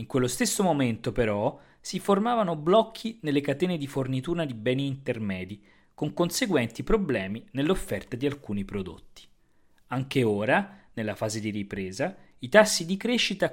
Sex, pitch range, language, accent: male, 115-170 Hz, Italian, native